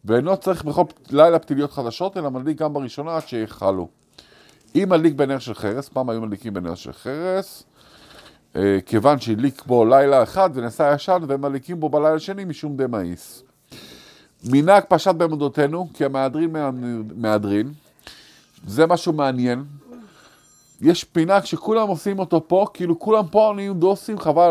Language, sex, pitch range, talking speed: Hebrew, male, 140-195 Hz, 145 wpm